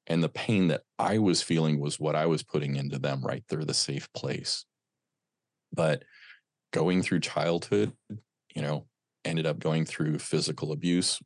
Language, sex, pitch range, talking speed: English, male, 75-90 Hz, 165 wpm